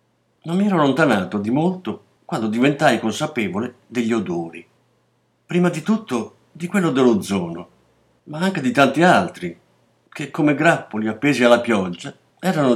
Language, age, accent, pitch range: Italian, 50-69, native, 105-145 Hz